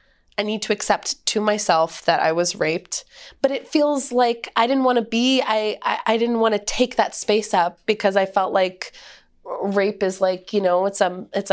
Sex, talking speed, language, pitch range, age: female, 215 wpm, English, 180-210 Hz, 20-39